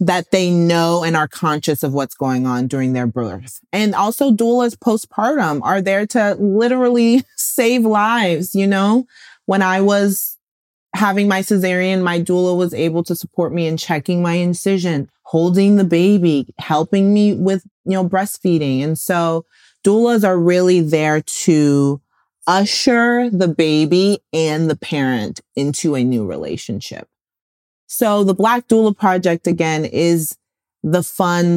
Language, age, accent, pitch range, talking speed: English, 30-49, American, 150-200 Hz, 145 wpm